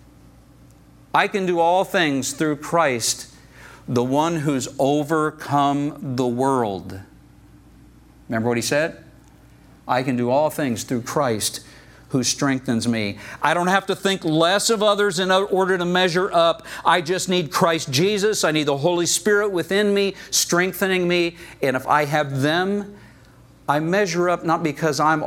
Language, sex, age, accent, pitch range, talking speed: English, male, 50-69, American, 135-195 Hz, 155 wpm